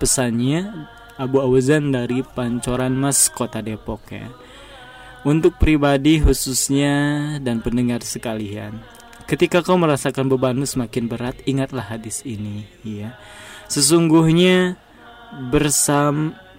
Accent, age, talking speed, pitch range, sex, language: native, 20-39, 100 wpm, 120-150 Hz, male, Indonesian